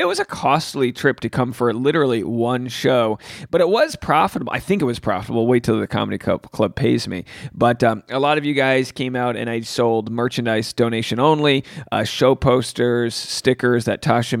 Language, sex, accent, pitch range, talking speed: English, male, American, 115-140 Hz, 205 wpm